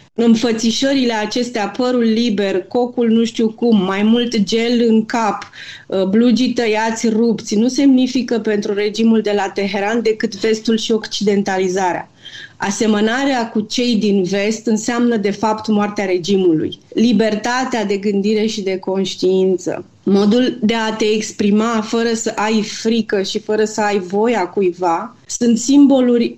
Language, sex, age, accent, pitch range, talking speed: Romanian, female, 30-49, native, 205-235 Hz, 135 wpm